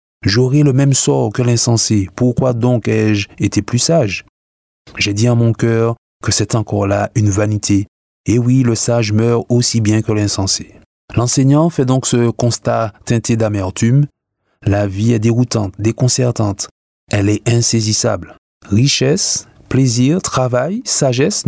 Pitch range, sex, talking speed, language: 105-135 Hz, male, 140 wpm, French